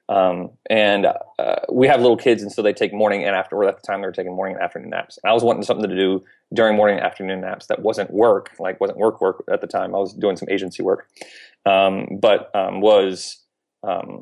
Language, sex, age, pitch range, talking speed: English, male, 30-49, 100-110 Hz, 230 wpm